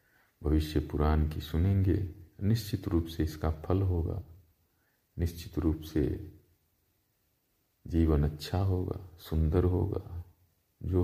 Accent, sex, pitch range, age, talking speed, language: native, male, 80-100 Hz, 50-69, 105 wpm, Hindi